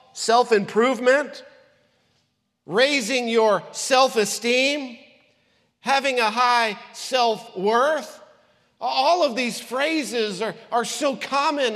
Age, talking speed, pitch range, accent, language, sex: 50-69, 80 wpm, 210-265 Hz, American, English, male